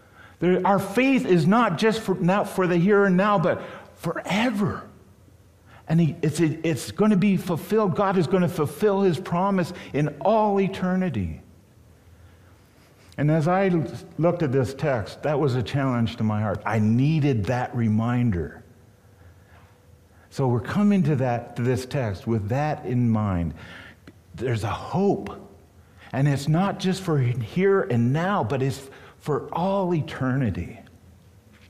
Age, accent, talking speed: 50-69, American, 140 wpm